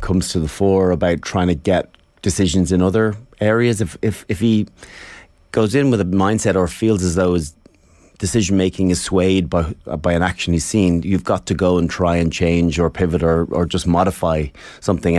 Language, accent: English, Irish